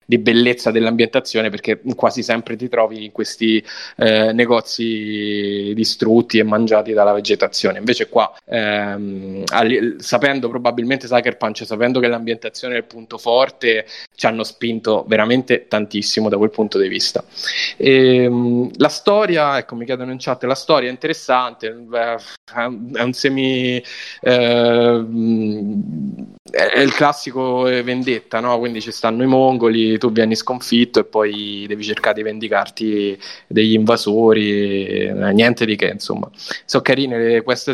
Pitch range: 110-125 Hz